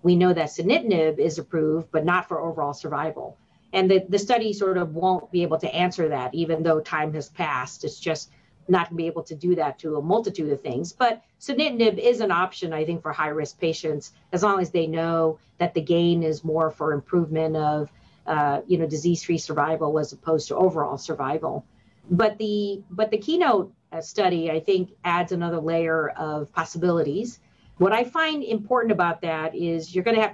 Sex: female